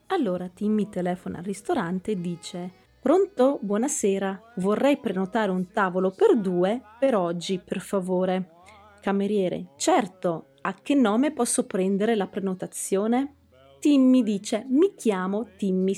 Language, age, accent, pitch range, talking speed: Italian, 30-49, native, 180-235 Hz, 125 wpm